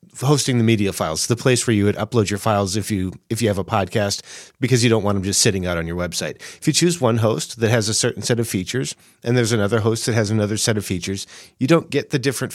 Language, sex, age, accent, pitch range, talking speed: English, male, 40-59, American, 110-135 Hz, 270 wpm